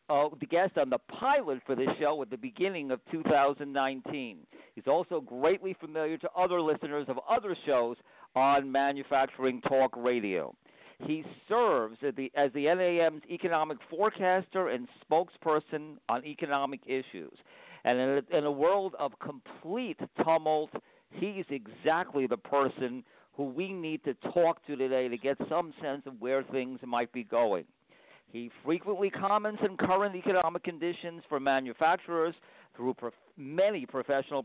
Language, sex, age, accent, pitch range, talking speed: English, male, 50-69, American, 130-175 Hz, 145 wpm